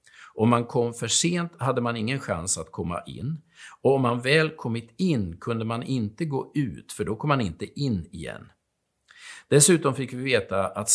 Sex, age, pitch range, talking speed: male, 50-69, 105-140 Hz, 190 wpm